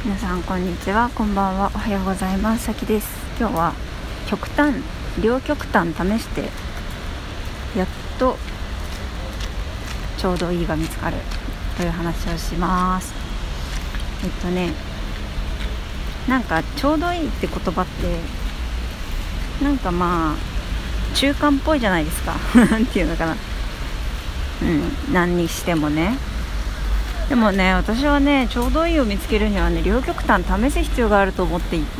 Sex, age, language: female, 40-59, Japanese